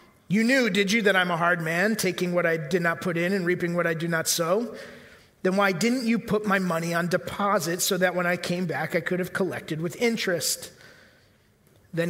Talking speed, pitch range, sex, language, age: 225 wpm, 170-205 Hz, male, English, 30-49